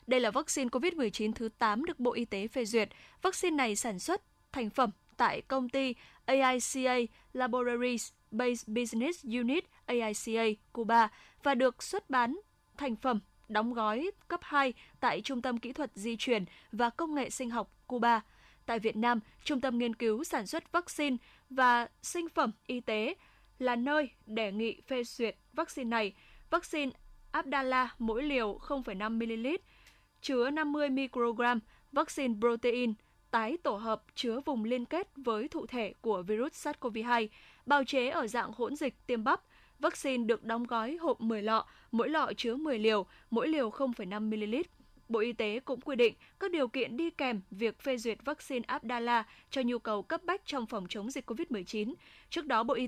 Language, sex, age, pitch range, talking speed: Vietnamese, female, 10-29, 225-275 Hz, 170 wpm